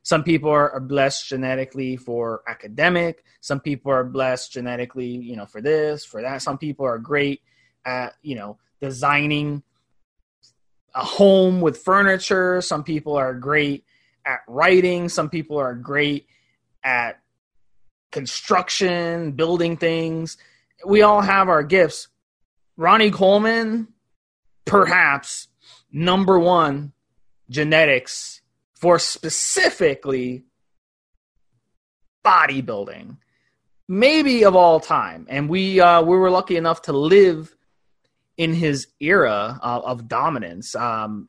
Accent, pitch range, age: American, 125-175 Hz, 20-39